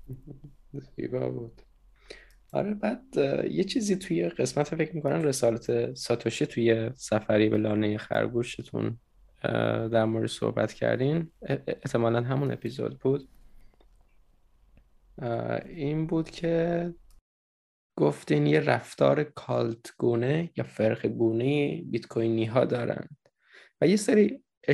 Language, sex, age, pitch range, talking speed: Persian, male, 20-39, 110-145 Hz, 95 wpm